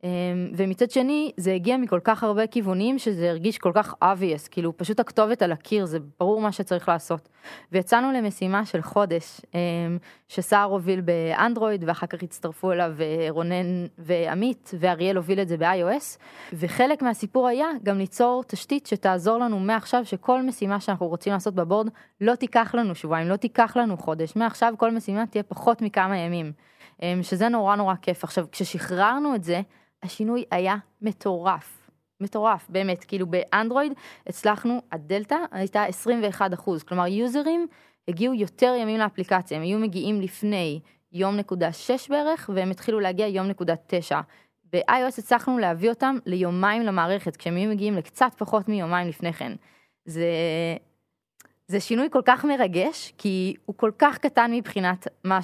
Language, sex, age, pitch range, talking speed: Hebrew, female, 20-39, 180-230 Hz, 150 wpm